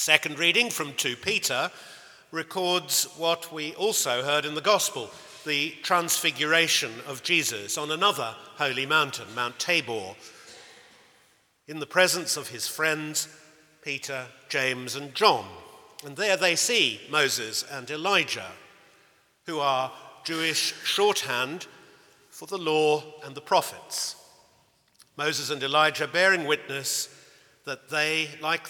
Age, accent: 50-69, British